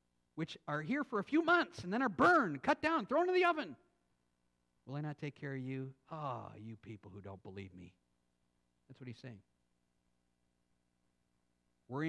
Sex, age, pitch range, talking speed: male, 50-69, 95-135 Hz, 185 wpm